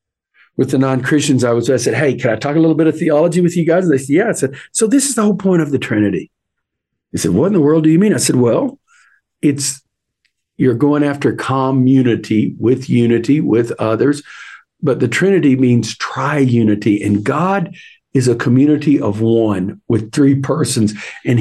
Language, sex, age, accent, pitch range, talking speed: English, male, 50-69, American, 120-160 Hz, 200 wpm